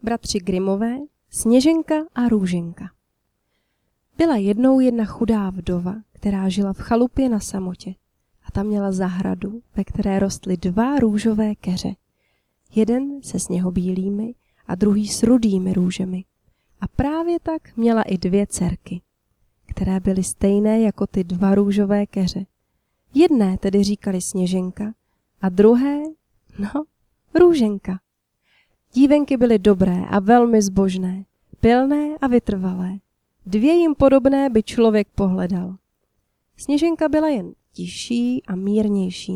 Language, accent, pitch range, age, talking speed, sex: Czech, native, 190-245 Hz, 20-39, 120 wpm, female